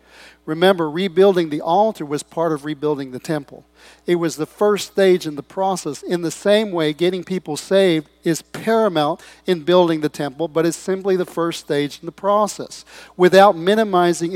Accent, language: American, English